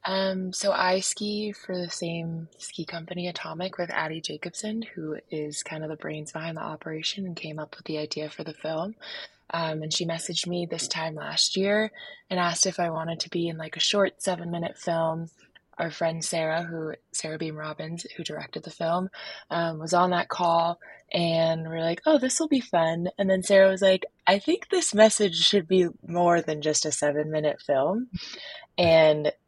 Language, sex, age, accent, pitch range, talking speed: English, female, 20-39, American, 155-185 Hz, 195 wpm